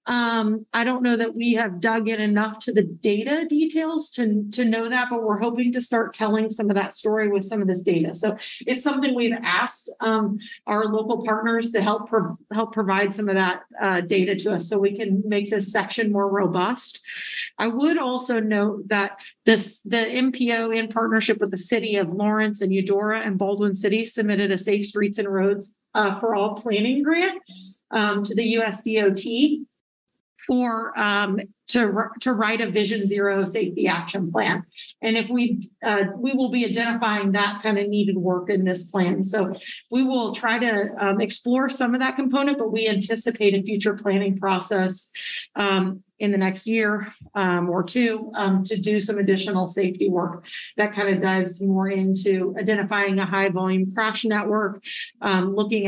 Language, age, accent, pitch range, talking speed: English, 40-59, American, 195-225 Hz, 185 wpm